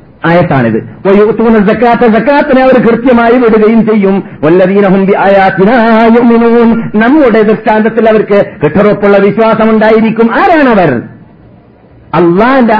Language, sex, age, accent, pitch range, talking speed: Malayalam, male, 50-69, native, 170-230 Hz, 55 wpm